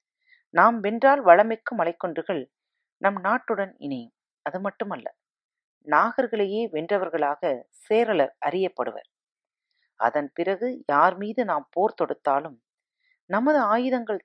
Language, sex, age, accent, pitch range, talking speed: Tamil, female, 40-59, native, 165-245 Hz, 95 wpm